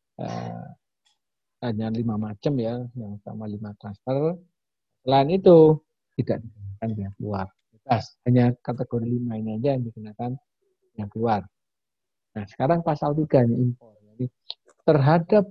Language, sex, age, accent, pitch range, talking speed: Indonesian, male, 50-69, native, 115-150 Hz, 125 wpm